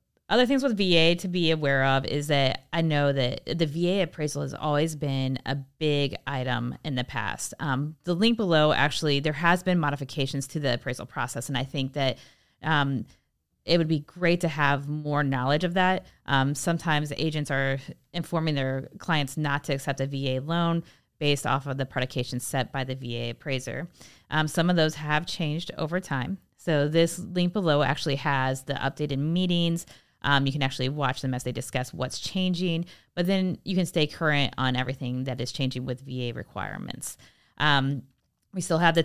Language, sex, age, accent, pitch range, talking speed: English, female, 20-39, American, 135-165 Hz, 190 wpm